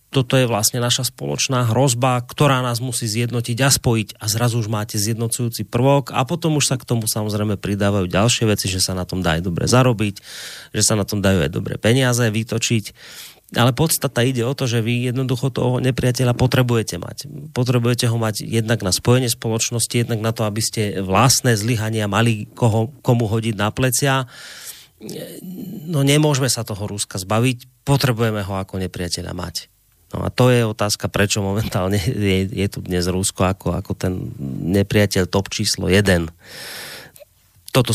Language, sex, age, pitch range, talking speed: Slovak, male, 30-49, 105-130 Hz, 170 wpm